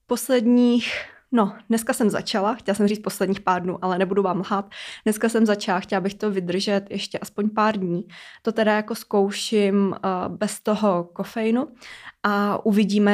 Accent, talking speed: native, 160 wpm